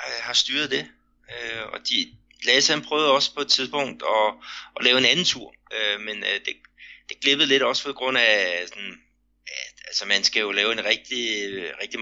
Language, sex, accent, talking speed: Danish, male, native, 175 wpm